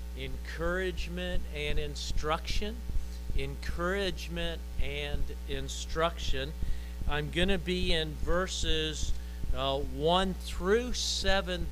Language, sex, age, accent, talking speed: English, male, 50-69, American, 75 wpm